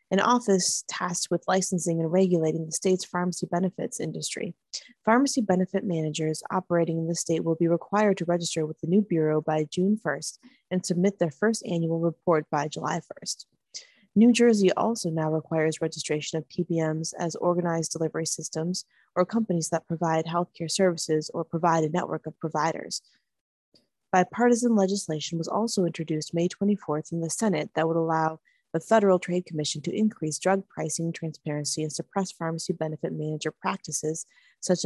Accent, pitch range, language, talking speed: American, 160-200 Hz, English, 160 wpm